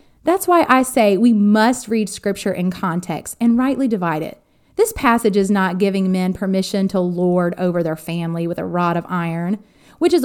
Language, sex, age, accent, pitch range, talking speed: English, female, 30-49, American, 190-260 Hz, 195 wpm